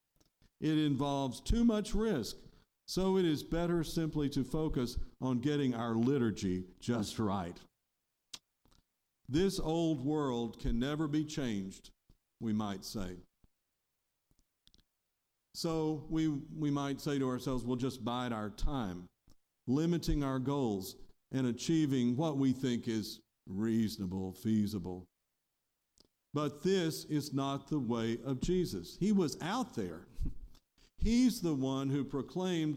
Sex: male